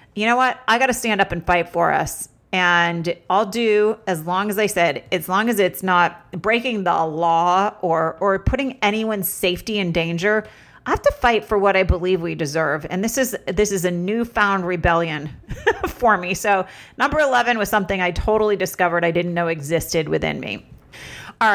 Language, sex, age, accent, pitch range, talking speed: English, female, 40-59, American, 170-215 Hz, 195 wpm